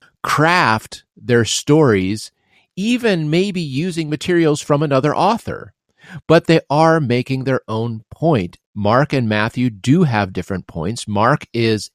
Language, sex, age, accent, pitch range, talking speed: English, male, 40-59, American, 110-150 Hz, 130 wpm